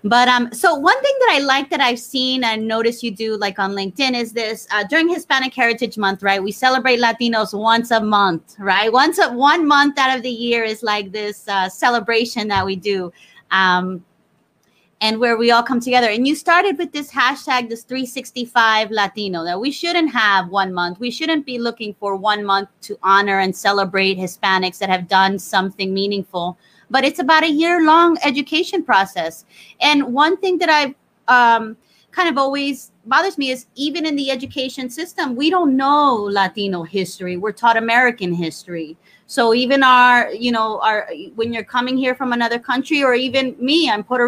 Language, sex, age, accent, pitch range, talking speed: English, female, 30-49, American, 200-265 Hz, 190 wpm